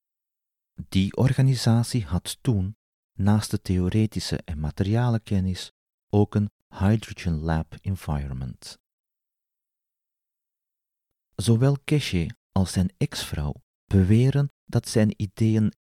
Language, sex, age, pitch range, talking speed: Dutch, male, 40-59, 85-120 Hz, 90 wpm